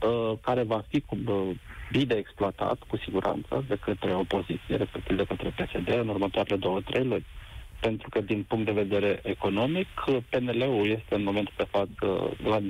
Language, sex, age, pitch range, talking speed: Romanian, male, 50-69, 95-120 Hz, 155 wpm